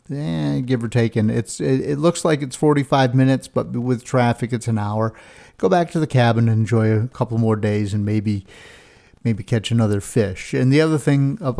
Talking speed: 205 wpm